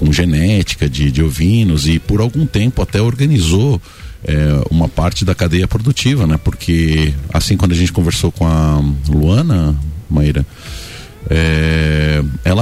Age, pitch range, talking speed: 50-69, 85-125 Hz, 135 wpm